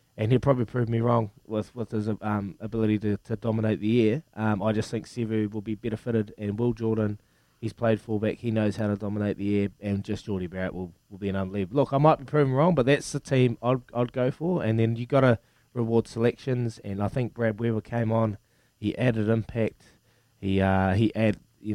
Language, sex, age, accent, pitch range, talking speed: English, male, 20-39, Australian, 105-135 Hz, 230 wpm